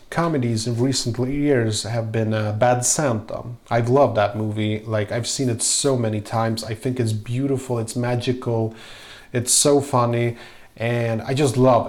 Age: 30-49